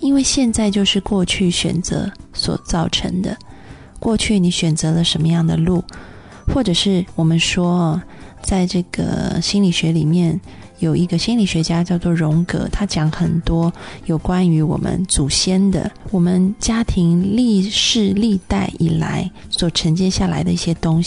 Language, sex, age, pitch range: Chinese, female, 20-39, 170-200 Hz